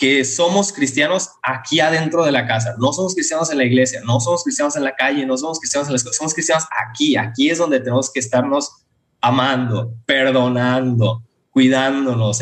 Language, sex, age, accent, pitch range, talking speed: Spanish, male, 20-39, Mexican, 125-170 Hz, 180 wpm